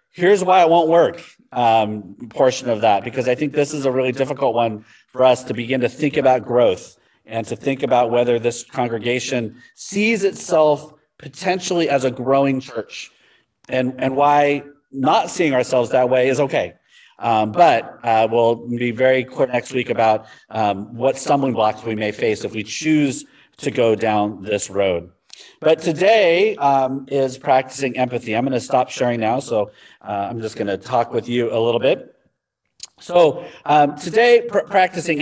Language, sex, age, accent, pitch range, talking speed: English, male, 40-59, American, 120-150 Hz, 175 wpm